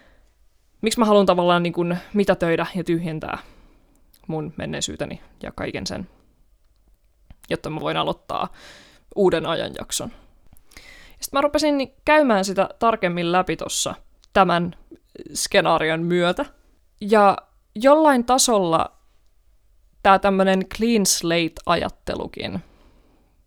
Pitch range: 165-200 Hz